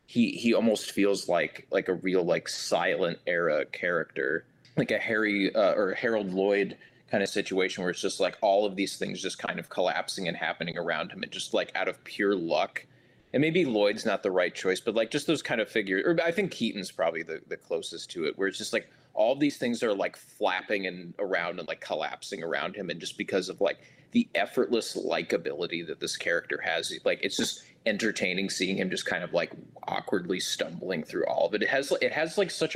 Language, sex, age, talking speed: English, male, 20-39, 215 wpm